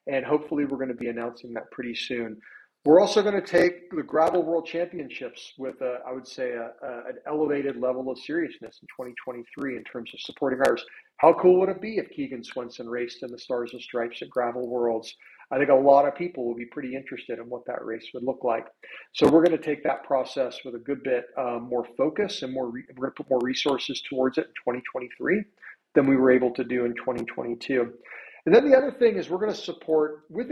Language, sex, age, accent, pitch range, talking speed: English, male, 40-59, American, 125-165 Hz, 225 wpm